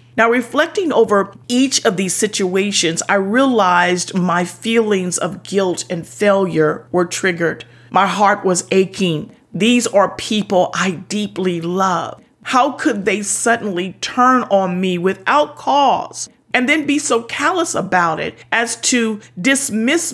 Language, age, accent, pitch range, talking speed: English, 40-59, American, 180-230 Hz, 135 wpm